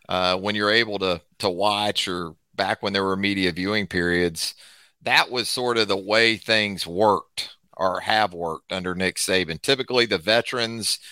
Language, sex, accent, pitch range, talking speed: English, male, American, 105-120 Hz, 175 wpm